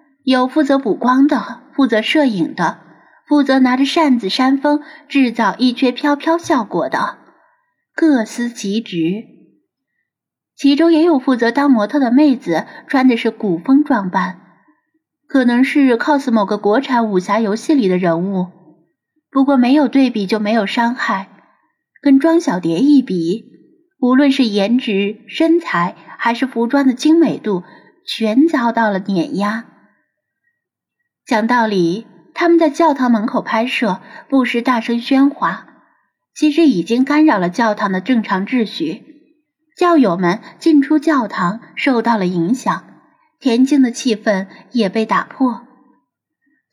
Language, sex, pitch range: Chinese, female, 210-295 Hz